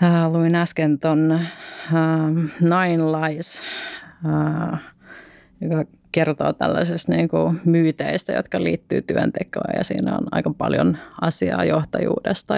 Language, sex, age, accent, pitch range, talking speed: Finnish, female, 30-49, native, 145-160 Hz, 110 wpm